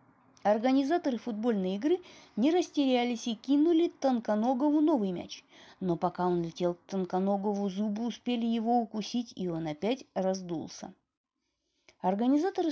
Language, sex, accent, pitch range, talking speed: Russian, female, native, 200-320 Hz, 120 wpm